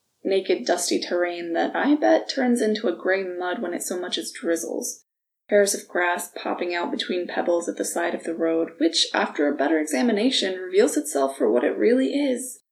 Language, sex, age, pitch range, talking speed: English, female, 20-39, 180-250 Hz, 200 wpm